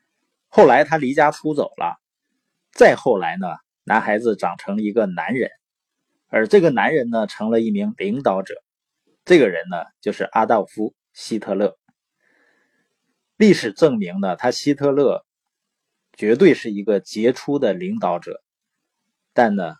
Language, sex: Chinese, male